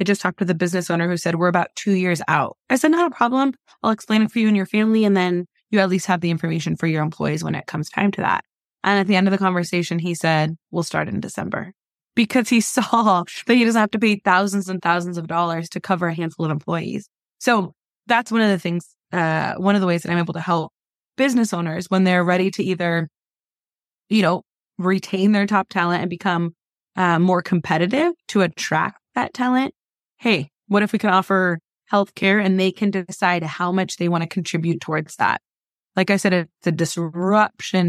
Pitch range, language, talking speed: 170-200 Hz, English, 225 wpm